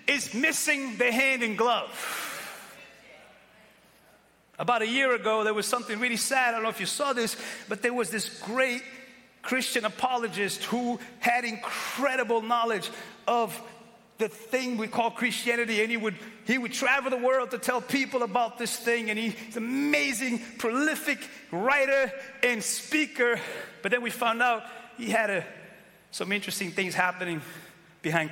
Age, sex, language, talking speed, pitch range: 30-49, male, English, 155 wpm, 205-255 Hz